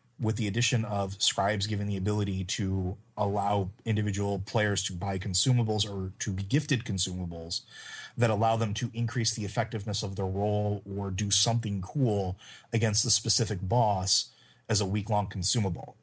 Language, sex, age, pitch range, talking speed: English, male, 30-49, 100-115 Hz, 160 wpm